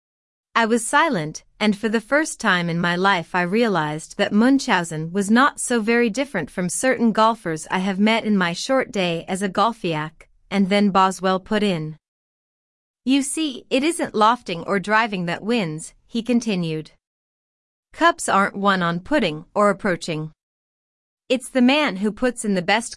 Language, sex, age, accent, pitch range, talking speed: English, female, 30-49, American, 175-245 Hz, 165 wpm